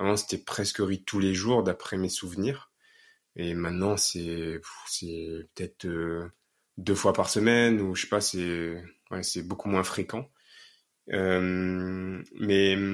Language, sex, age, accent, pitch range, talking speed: French, male, 20-39, French, 95-115 Hz, 150 wpm